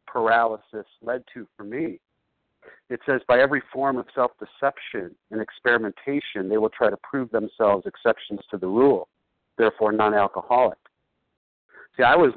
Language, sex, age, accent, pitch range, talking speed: English, male, 50-69, American, 110-135 Hz, 140 wpm